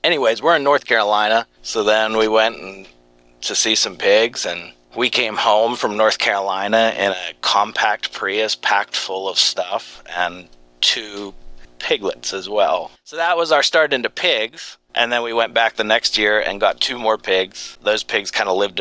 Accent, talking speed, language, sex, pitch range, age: American, 185 wpm, English, male, 80-105 Hz, 30-49